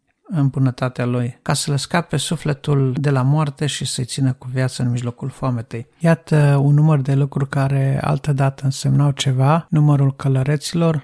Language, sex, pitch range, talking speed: Romanian, male, 130-150 Hz, 165 wpm